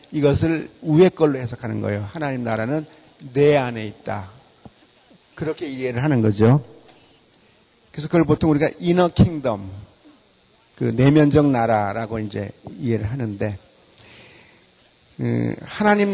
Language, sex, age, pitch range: Korean, male, 40-59, 120-150 Hz